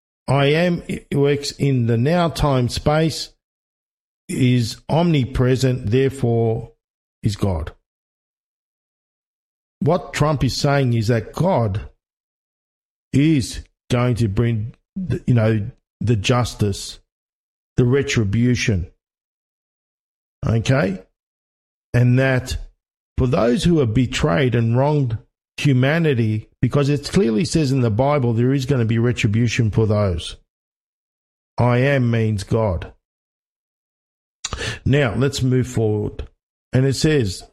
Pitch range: 115-140 Hz